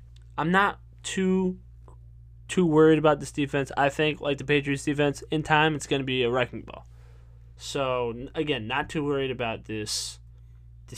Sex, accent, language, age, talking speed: male, American, English, 20-39, 170 wpm